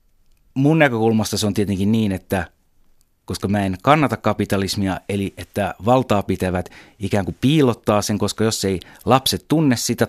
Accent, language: native, Finnish